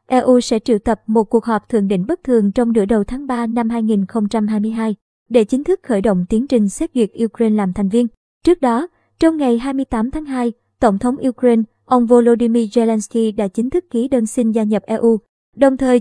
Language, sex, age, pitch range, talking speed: Vietnamese, male, 20-39, 220-255 Hz, 205 wpm